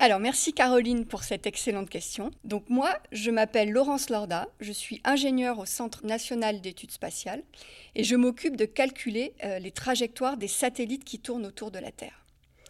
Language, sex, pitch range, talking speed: French, female, 210-265 Hz, 175 wpm